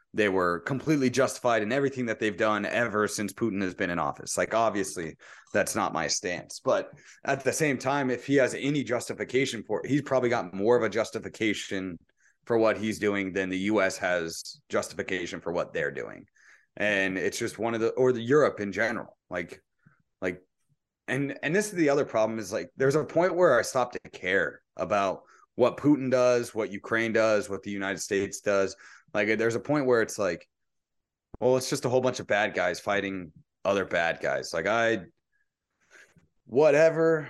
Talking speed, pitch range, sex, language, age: 195 wpm, 105-130 Hz, male, English, 30-49